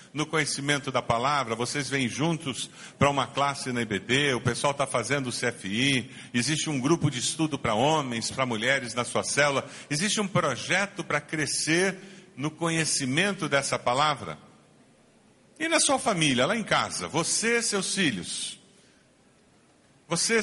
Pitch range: 135-190 Hz